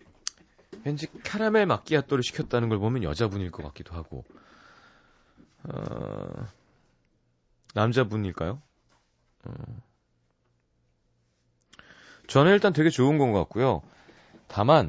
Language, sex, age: Korean, male, 30-49